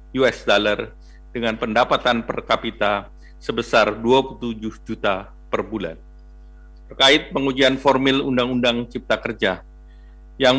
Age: 50-69